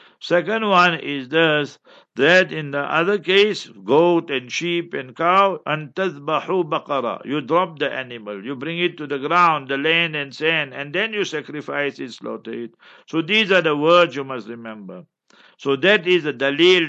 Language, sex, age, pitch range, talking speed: English, male, 60-79, 145-180 Hz, 175 wpm